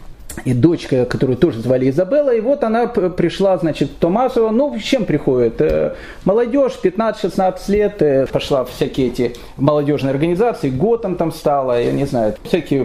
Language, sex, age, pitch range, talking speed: Russian, male, 30-49, 155-230 Hz, 150 wpm